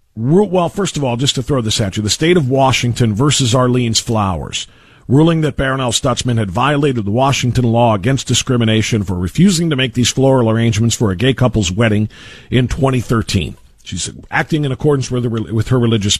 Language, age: English, 50-69